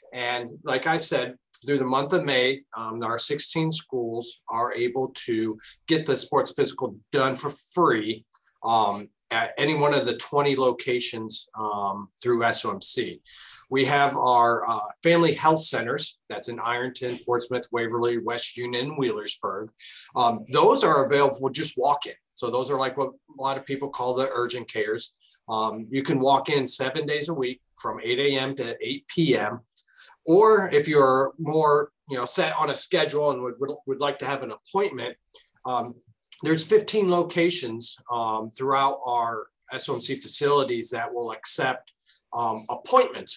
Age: 40-59